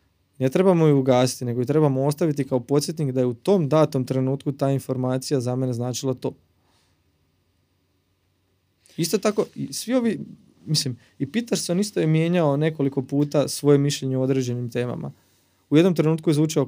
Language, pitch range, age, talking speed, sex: Croatian, 100-145 Hz, 20-39, 160 wpm, male